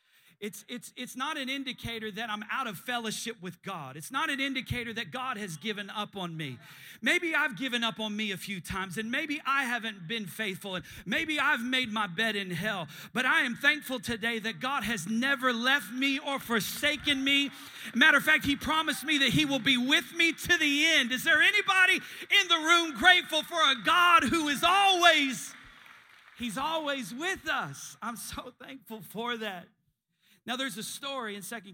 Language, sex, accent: English, male, American